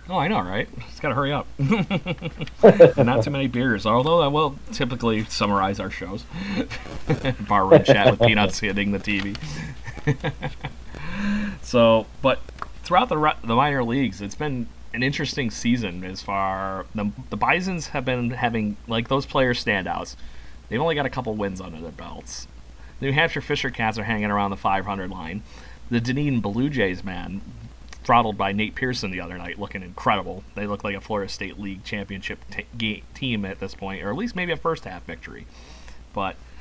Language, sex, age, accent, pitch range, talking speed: English, male, 30-49, American, 95-130 Hz, 180 wpm